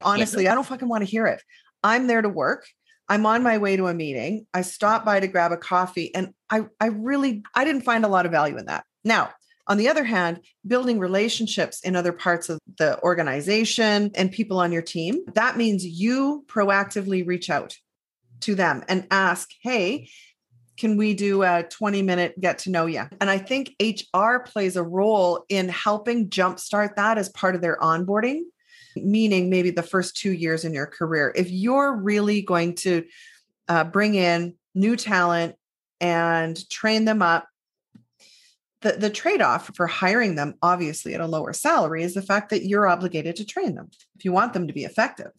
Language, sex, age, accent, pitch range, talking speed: English, female, 40-59, American, 175-220 Hz, 190 wpm